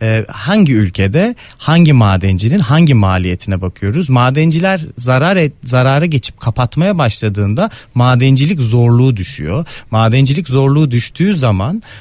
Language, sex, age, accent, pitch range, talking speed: Turkish, male, 30-49, native, 105-145 Hz, 105 wpm